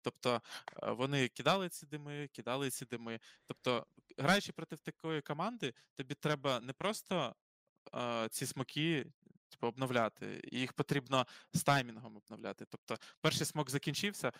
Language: Ukrainian